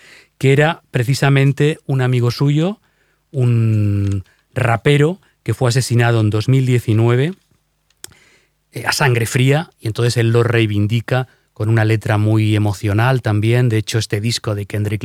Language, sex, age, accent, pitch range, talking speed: Spanish, male, 30-49, Spanish, 105-125 Hz, 135 wpm